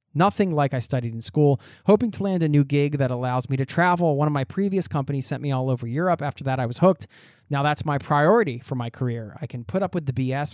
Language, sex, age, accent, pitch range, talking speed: English, male, 20-39, American, 125-170 Hz, 260 wpm